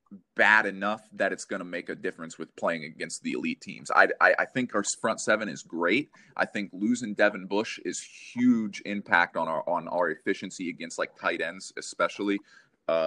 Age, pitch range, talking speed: 30-49, 100-130 Hz, 195 wpm